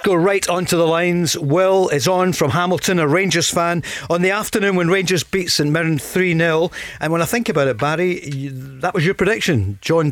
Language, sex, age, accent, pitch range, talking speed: English, male, 40-59, British, 140-175 Hz, 210 wpm